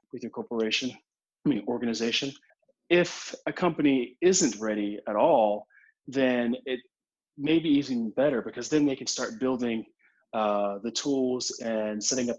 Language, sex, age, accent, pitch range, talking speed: English, male, 30-49, American, 105-130 Hz, 150 wpm